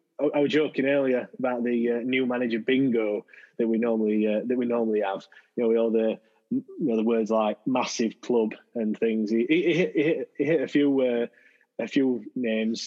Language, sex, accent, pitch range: English, male, British, 110-135 Hz